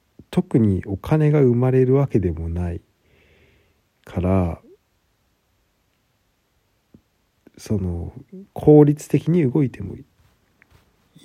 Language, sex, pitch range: Japanese, male, 95-135 Hz